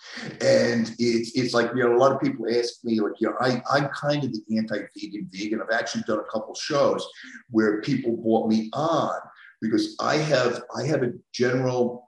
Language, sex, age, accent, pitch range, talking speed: English, male, 50-69, American, 115-185 Hz, 200 wpm